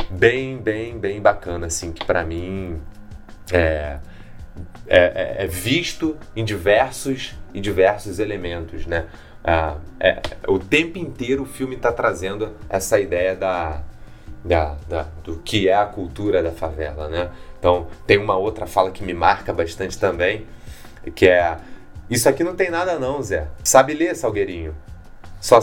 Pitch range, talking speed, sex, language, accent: 85-140 Hz, 135 wpm, male, Portuguese, Brazilian